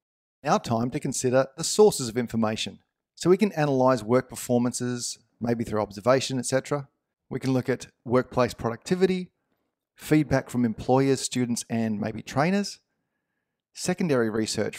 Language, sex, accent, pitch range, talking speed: English, male, Australian, 110-135 Hz, 135 wpm